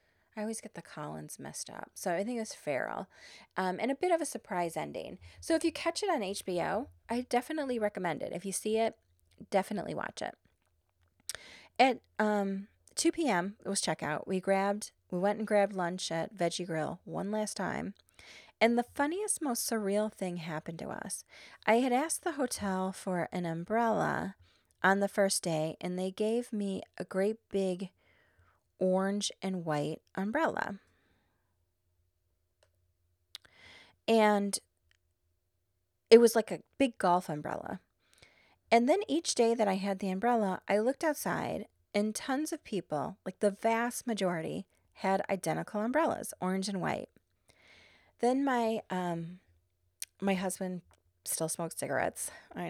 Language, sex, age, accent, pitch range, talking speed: English, female, 30-49, American, 155-225 Hz, 150 wpm